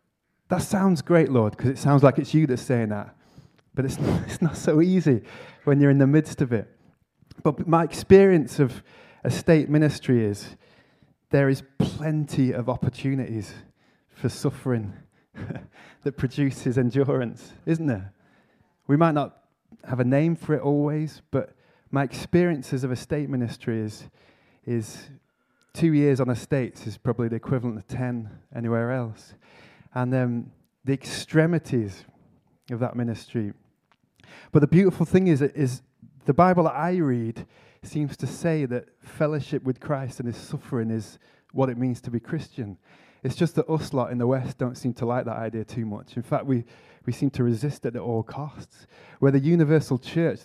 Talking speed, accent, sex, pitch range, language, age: 170 wpm, British, male, 120-150 Hz, English, 20-39